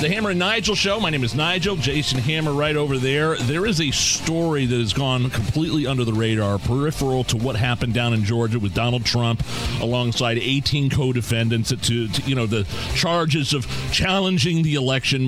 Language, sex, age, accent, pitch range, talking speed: English, male, 40-59, American, 120-160 Hz, 190 wpm